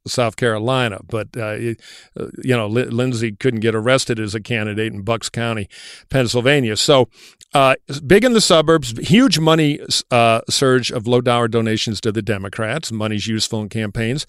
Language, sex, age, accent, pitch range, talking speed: English, male, 50-69, American, 110-145 Hz, 160 wpm